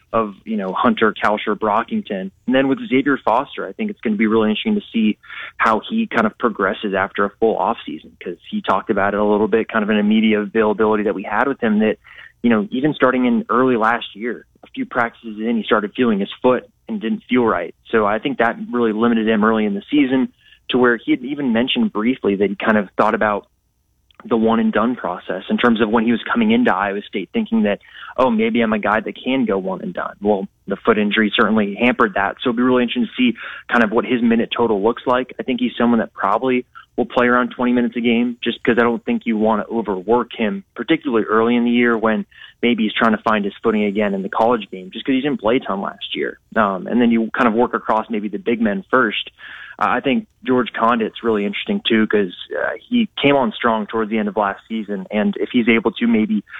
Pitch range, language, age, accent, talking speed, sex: 110-140 Hz, English, 30-49, American, 250 wpm, male